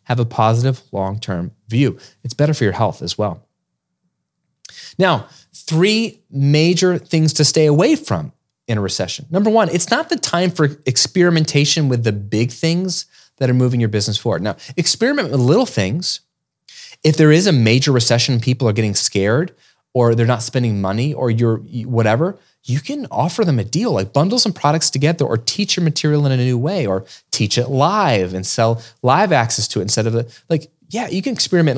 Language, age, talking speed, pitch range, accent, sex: English, 30-49, 190 wpm, 115-160 Hz, American, male